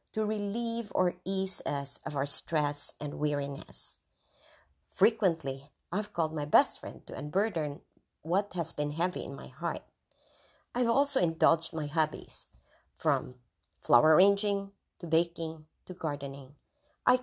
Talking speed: 130 wpm